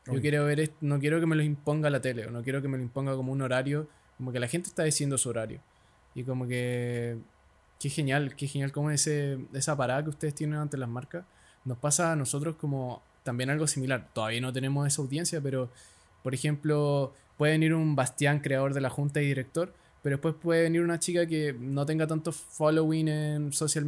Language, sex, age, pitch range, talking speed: Spanish, male, 20-39, 125-155 Hz, 210 wpm